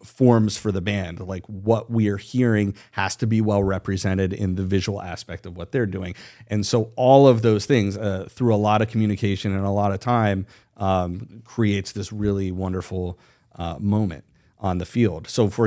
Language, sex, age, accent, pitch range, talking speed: English, male, 40-59, American, 95-115 Hz, 195 wpm